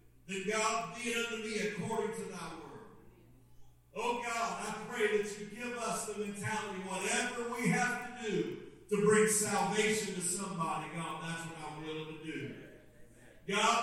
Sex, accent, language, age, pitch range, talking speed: male, American, English, 50-69, 165-220 Hz, 160 wpm